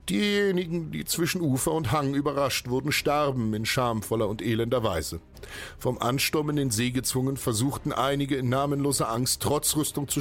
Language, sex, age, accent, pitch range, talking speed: German, male, 50-69, German, 100-135 Hz, 165 wpm